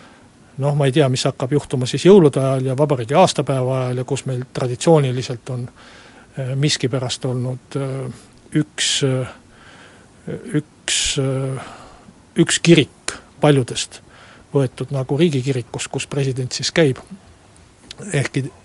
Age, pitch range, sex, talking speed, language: 60-79, 130-145 Hz, male, 105 wpm, Finnish